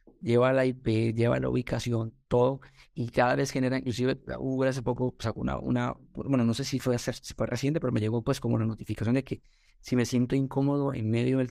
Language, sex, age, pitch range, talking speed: Spanish, male, 30-49, 115-140 Hz, 230 wpm